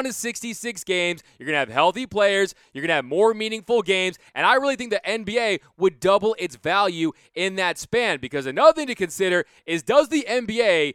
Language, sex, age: English, male, 20-39